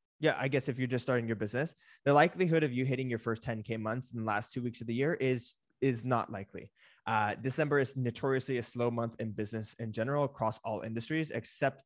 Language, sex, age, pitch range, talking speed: English, male, 20-39, 115-145 Hz, 230 wpm